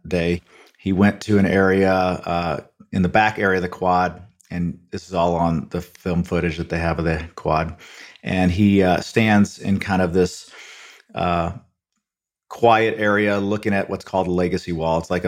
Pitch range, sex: 85-100 Hz, male